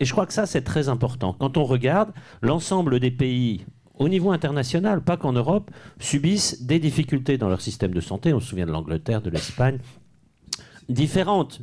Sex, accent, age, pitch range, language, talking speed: male, French, 50-69, 110-155 Hz, French, 185 wpm